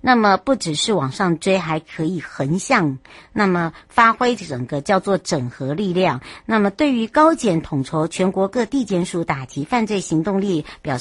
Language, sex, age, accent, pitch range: Chinese, male, 60-79, American, 155-210 Hz